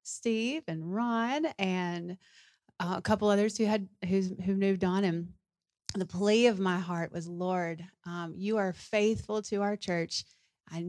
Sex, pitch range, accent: female, 170-195 Hz, American